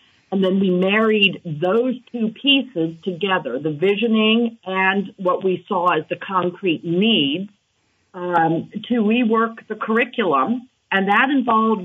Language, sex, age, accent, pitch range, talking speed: English, female, 50-69, American, 160-215 Hz, 130 wpm